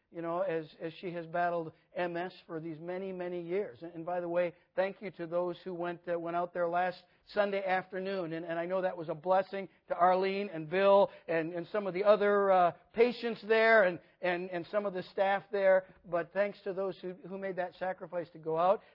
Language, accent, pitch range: English, American, 175-205 Hz